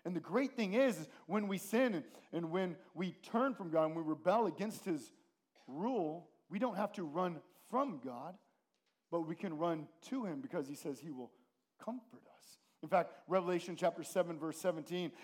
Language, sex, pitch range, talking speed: English, male, 165-235 Hz, 195 wpm